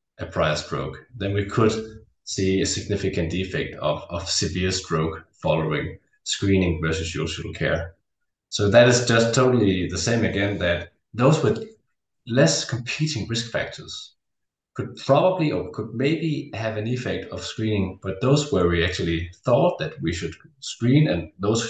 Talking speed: 155 wpm